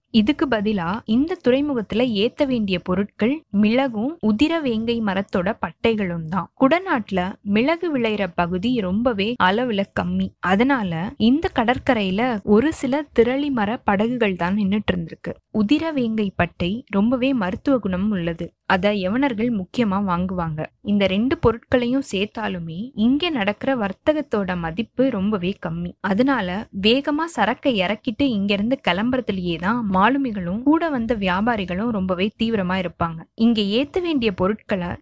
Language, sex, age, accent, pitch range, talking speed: Tamil, female, 20-39, native, 195-255 Hz, 110 wpm